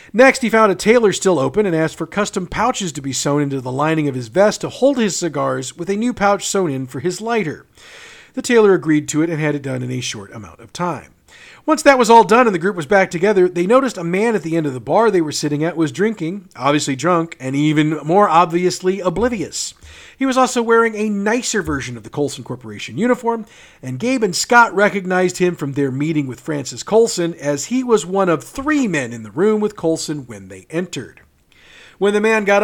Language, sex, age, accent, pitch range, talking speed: English, male, 40-59, American, 145-215 Hz, 230 wpm